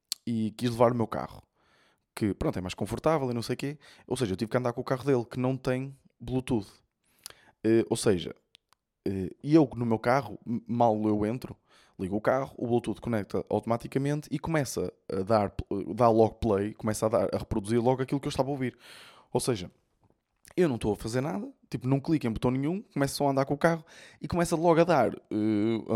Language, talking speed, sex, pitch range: Portuguese, 215 wpm, male, 105-135 Hz